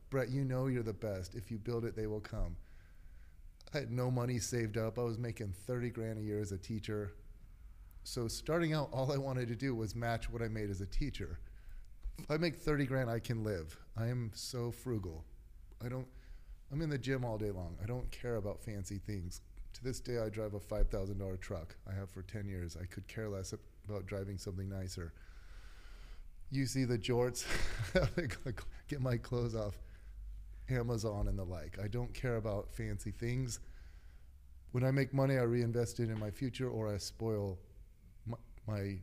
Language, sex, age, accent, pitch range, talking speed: English, male, 30-49, American, 90-120 Hz, 190 wpm